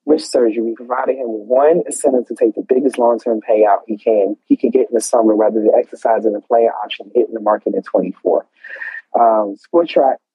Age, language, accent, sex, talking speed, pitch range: 30-49, English, American, male, 210 wpm, 110-135 Hz